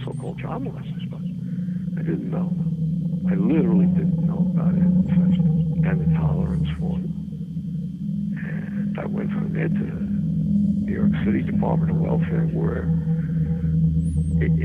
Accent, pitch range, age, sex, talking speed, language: American, 135-170 Hz, 60-79, male, 135 wpm, English